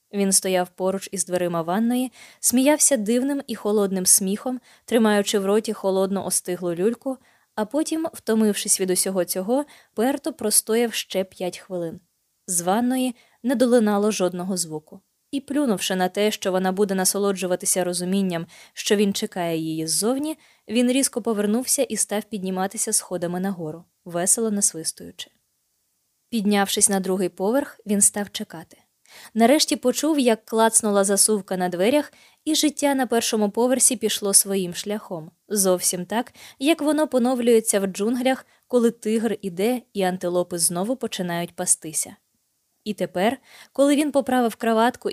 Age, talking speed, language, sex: 20-39, 135 wpm, Ukrainian, female